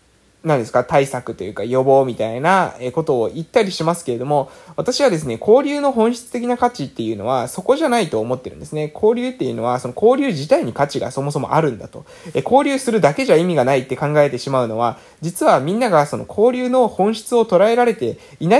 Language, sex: Japanese, male